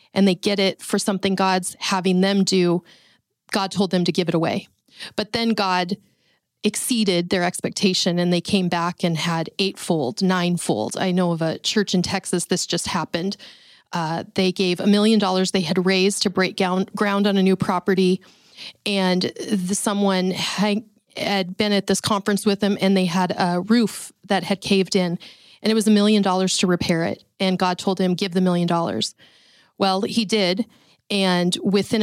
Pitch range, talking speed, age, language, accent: 180-210 Hz, 180 wpm, 30-49, English, American